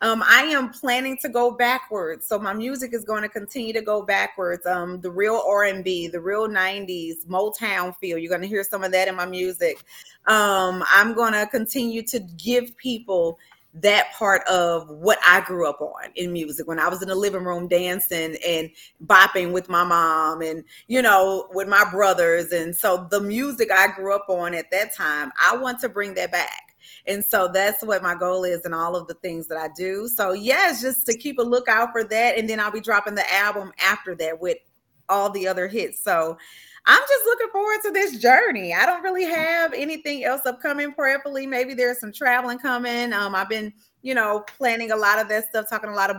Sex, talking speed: female, 215 wpm